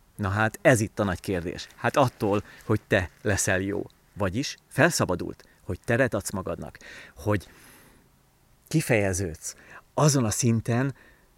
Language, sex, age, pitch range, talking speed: Hungarian, male, 30-49, 105-145 Hz, 125 wpm